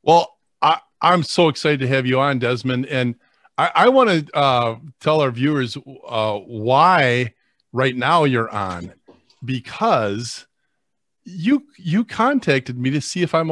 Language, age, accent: English, 40-59, American